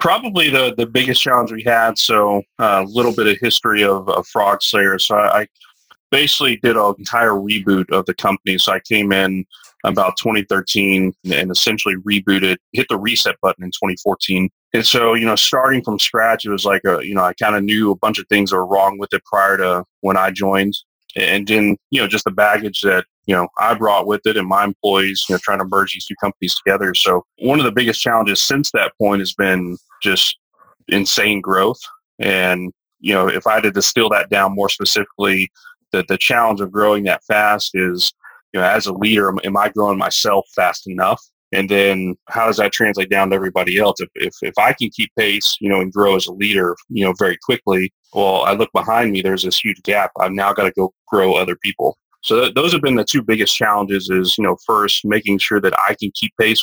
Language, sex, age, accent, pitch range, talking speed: English, male, 30-49, American, 95-110 Hz, 225 wpm